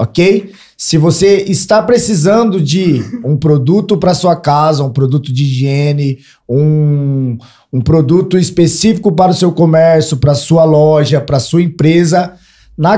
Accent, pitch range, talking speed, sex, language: Brazilian, 150-180 Hz, 150 wpm, male, Portuguese